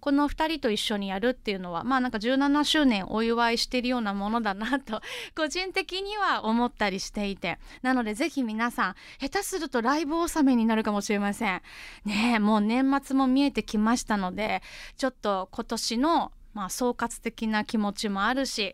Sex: female